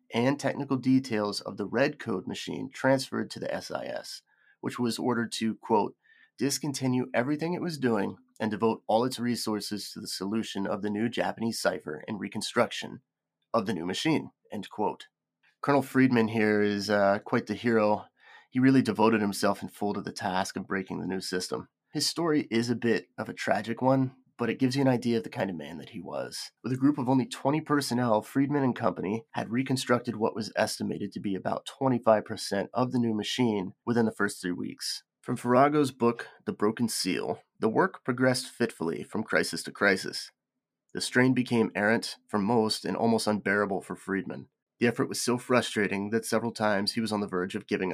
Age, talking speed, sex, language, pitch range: 30-49, 195 wpm, male, English, 105-130 Hz